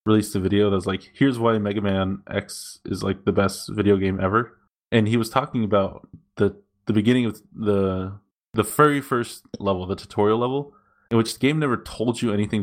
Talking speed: 205 wpm